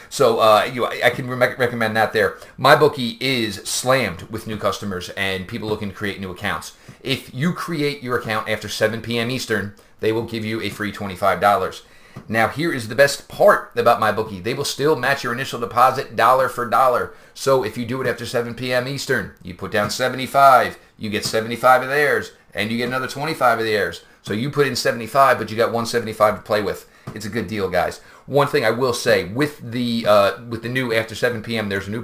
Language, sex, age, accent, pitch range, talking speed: English, male, 30-49, American, 105-130 Hz, 210 wpm